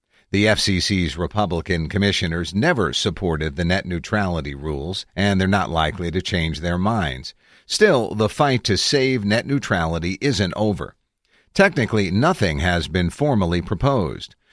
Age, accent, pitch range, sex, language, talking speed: 50-69, American, 90-115 Hz, male, English, 135 wpm